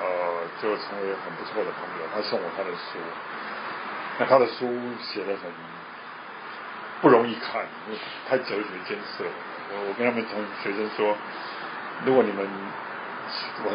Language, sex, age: Japanese, male, 50-69